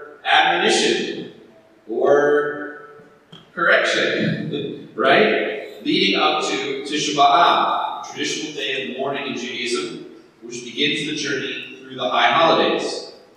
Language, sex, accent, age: English, male, American, 30-49